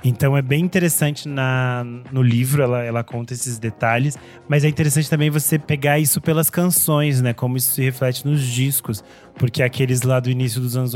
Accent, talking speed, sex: Brazilian, 185 wpm, male